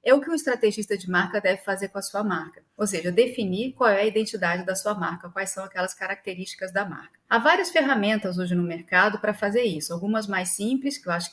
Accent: Brazilian